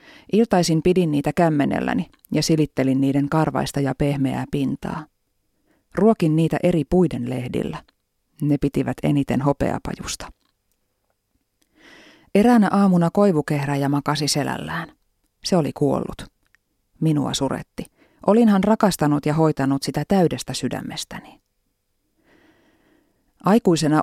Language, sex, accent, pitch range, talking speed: Finnish, female, native, 140-185 Hz, 95 wpm